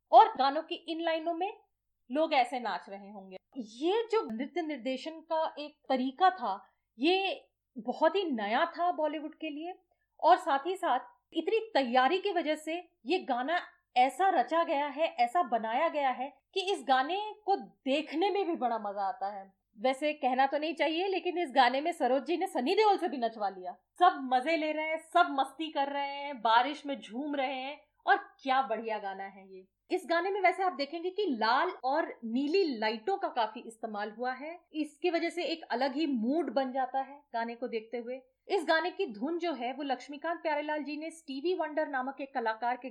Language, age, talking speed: Hindi, 30-49, 200 wpm